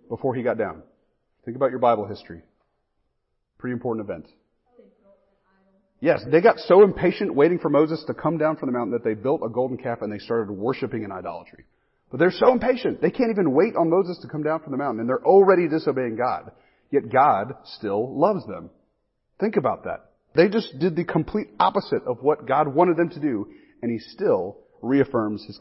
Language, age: English, 40-59